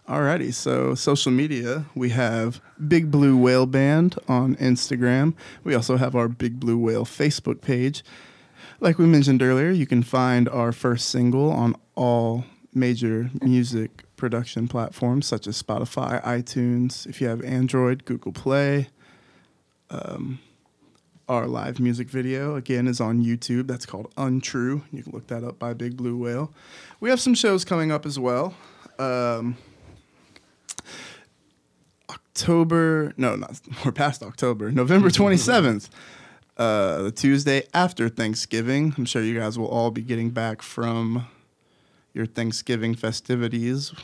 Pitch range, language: 115-135 Hz, English